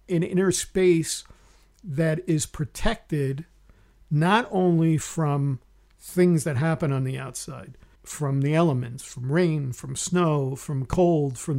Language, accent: English, American